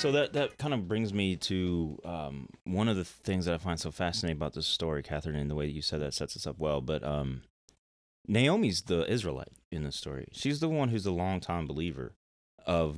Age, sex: 30-49, male